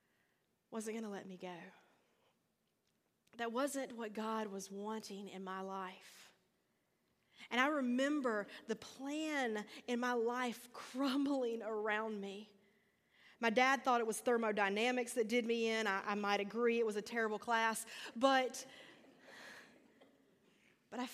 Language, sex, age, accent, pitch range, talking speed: English, female, 40-59, American, 210-255 Hz, 135 wpm